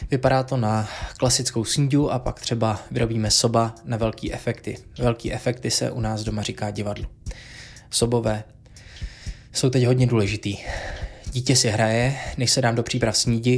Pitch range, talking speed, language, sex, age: 110-125 Hz, 155 wpm, Czech, male, 20-39